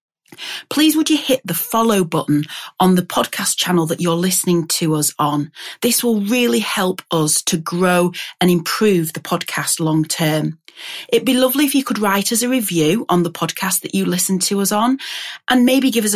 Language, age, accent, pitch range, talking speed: English, 30-49, British, 155-215 Hz, 195 wpm